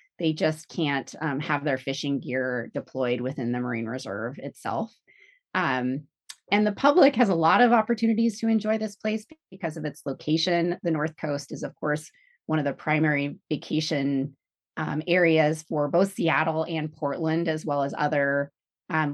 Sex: female